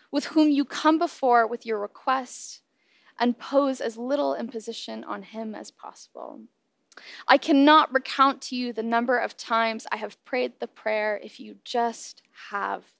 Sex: female